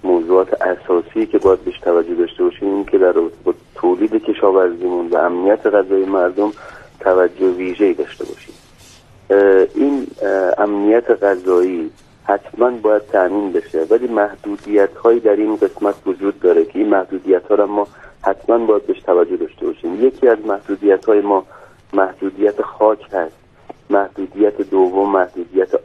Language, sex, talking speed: Persian, male, 130 wpm